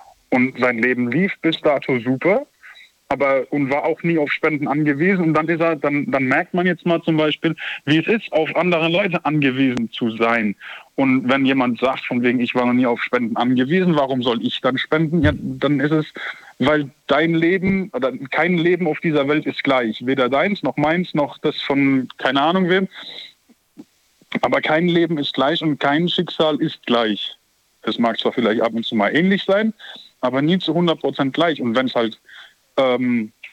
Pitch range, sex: 125-165 Hz, male